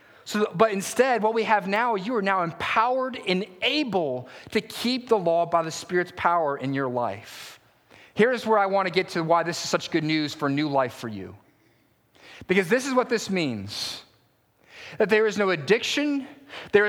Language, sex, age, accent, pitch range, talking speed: English, male, 30-49, American, 170-225 Hz, 190 wpm